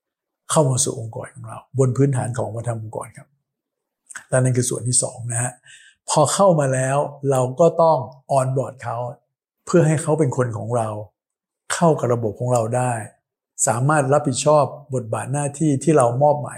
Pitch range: 120-145 Hz